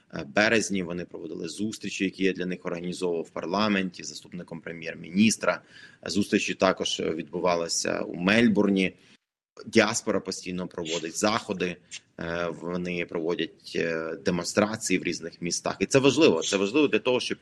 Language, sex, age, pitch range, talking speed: Ukrainian, male, 30-49, 95-110 Hz, 125 wpm